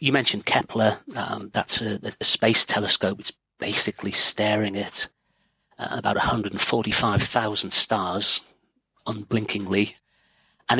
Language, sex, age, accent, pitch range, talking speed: English, male, 40-59, British, 105-130 Hz, 100 wpm